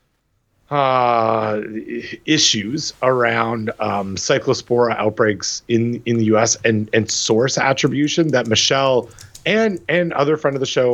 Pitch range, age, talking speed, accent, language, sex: 110-135 Hz, 30-49, 125 wpm, American, English, male